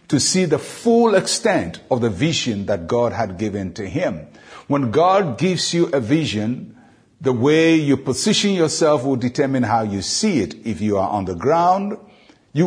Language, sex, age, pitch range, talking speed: English, male, 60-79, 120-165 Hz, 180 wpm